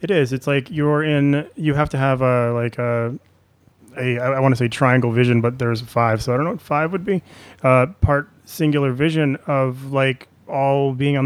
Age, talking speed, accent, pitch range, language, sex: 30-49, 215 wpm, American, 120-140 Hz, English, male